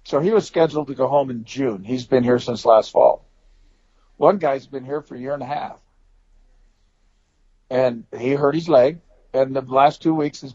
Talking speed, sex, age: 205 wpm, male, 50-69